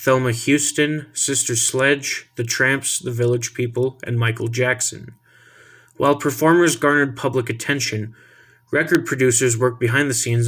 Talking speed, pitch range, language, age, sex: 130 wpm, 115-130 Hz, English, 20-39, male